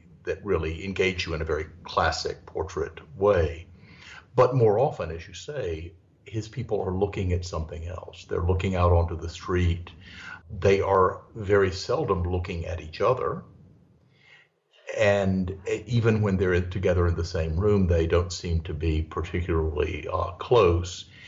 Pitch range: 85-95 Hz